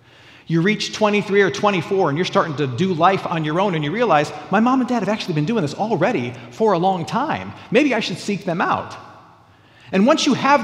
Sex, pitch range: male, 130-200 Hz